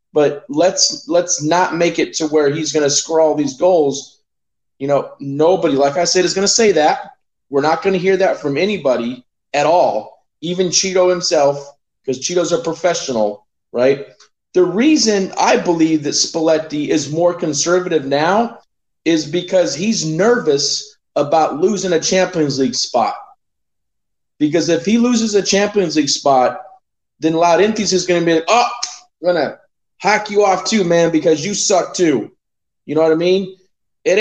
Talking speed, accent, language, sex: 170 wpm, American, English, male